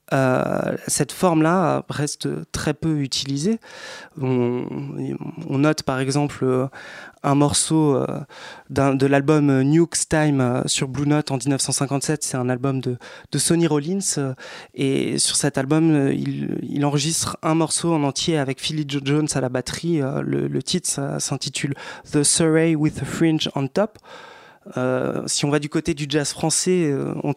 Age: 20-39